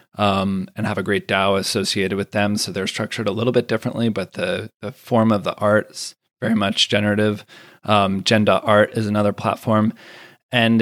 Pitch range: 105-120 Hz